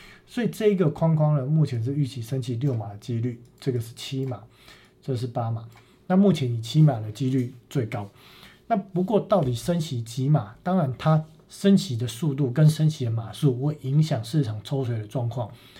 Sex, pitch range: male, 120-160 Hz